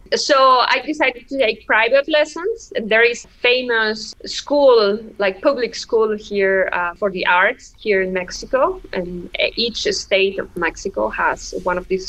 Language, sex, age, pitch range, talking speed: English, female, 20-39, 200-275 Hz, 165 wpm